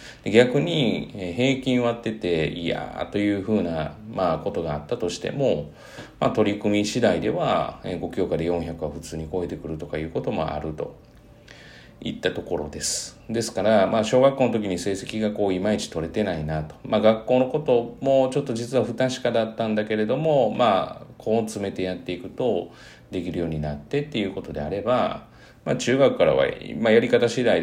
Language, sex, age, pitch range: Japanese, male, 40-59, 80-110 Hz